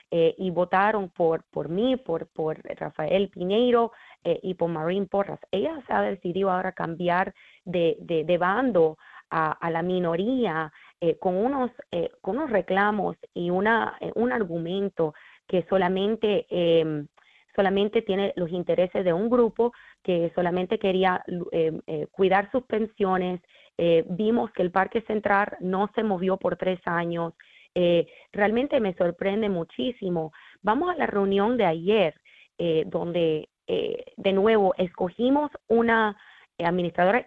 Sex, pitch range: female, 175-215 Hz